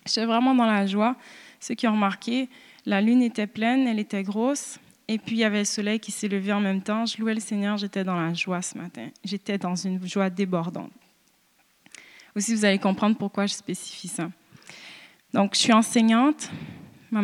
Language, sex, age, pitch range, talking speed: French, female, 20-39, 200-240 Hz, 200 wpm